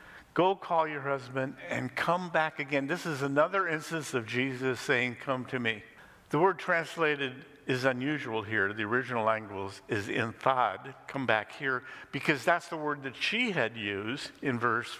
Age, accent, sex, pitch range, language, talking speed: 50-69, American, male, 115-150 Hz, English, 170 wpm